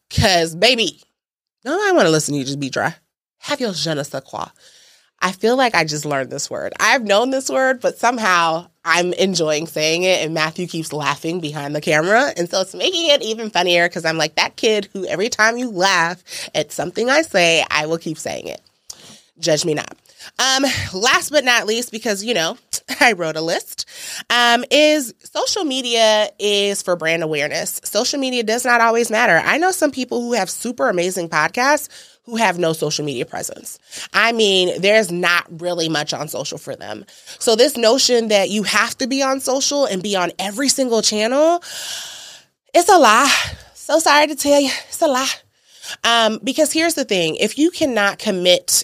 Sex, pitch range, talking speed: female, 170-255 Hz, 195 wpm